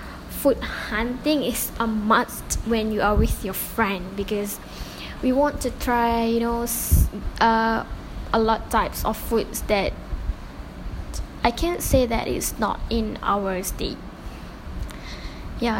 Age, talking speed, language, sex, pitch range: 10-29, 135 wpm, English, female, 215-240 Hz